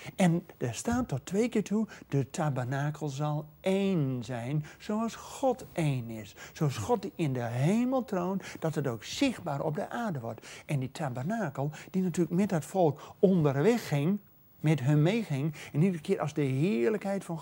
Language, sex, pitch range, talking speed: Dutch, male, 140-205 Hz, 175 wpm